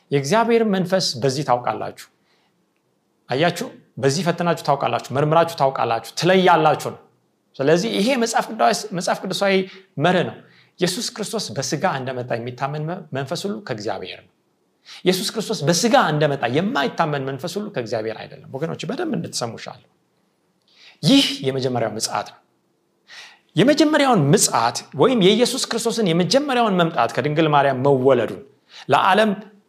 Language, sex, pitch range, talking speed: Amharic, male, 145-220 Hz, 70 wpm